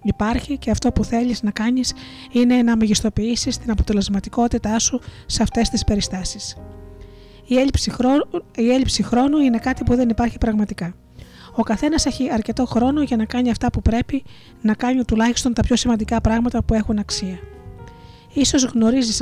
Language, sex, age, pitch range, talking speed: Greek, female, 20-39, 205-250 Hz, 155 wpm